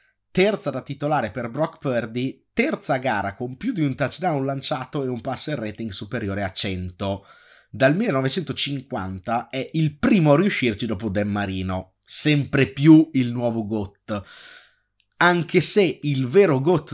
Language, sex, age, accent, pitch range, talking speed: Italian, male, 30-49, native, 100-145 Hz, 145 wpm